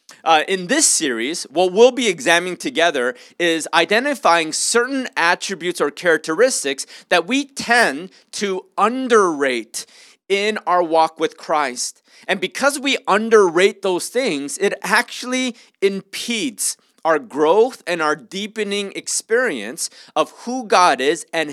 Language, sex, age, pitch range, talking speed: English, male, 30-49, 155-230 Hz, 125 wpm